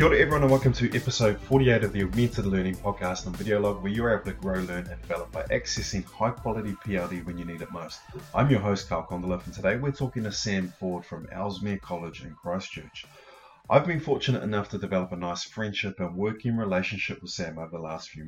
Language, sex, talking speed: English, male, 225 wpm